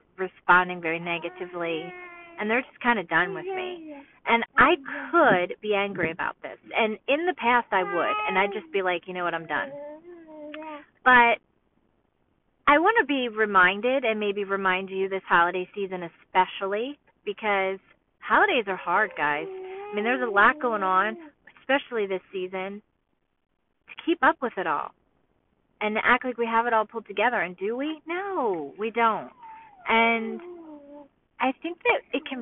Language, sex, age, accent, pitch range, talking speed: English, female, 40-59, American, 185-275 Hz, 165 wpm